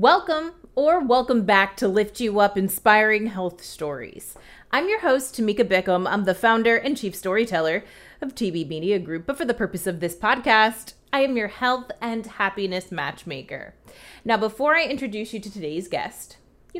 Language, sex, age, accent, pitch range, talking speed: English, female, 30-49, American, 190-245 Hz, 175 wpm